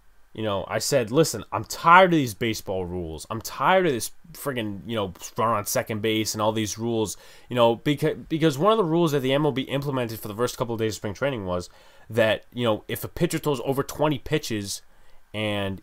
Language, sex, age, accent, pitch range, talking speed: English, male, 20-39, American, 105-145 Hz, 220 wpm